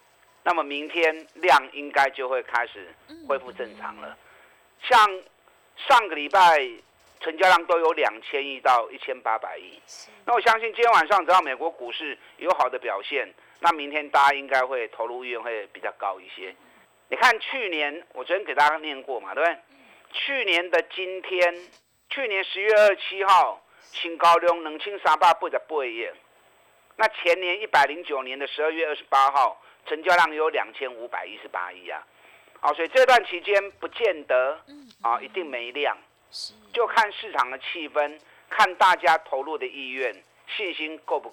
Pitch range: 155-230 Hz